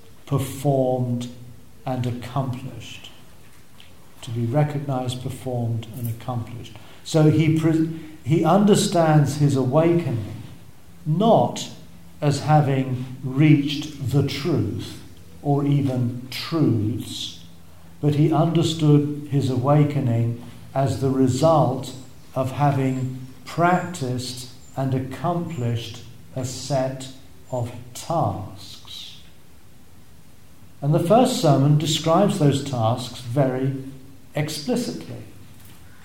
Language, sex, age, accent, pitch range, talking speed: English, male, 50-69, British, 120-150 Hz, 85 wpm